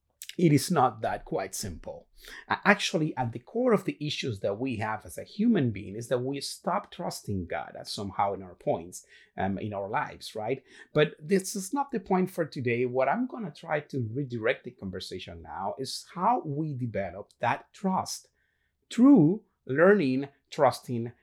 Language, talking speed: English, 175 wpm